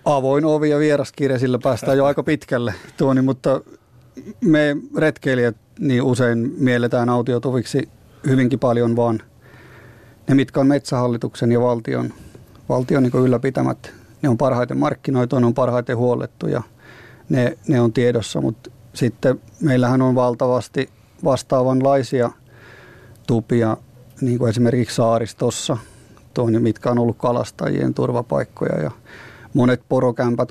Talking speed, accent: 120 wpm, native